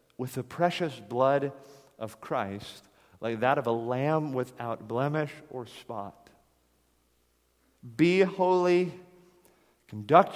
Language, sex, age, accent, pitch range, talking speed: English, male, 40-59, American, 125-170 Hz, 105 wpm